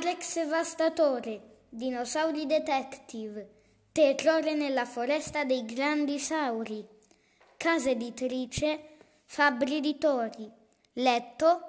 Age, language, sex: 20-39, Italian, female